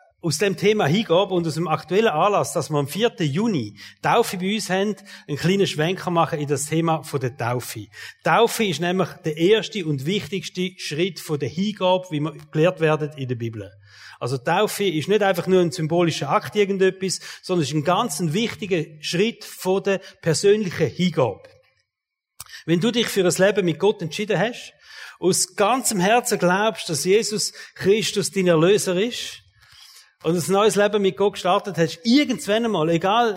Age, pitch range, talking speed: 40-59, 140-195 Hz, 175 wpm